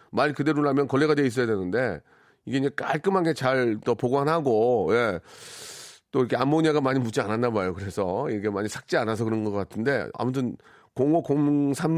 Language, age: Korean, 40-59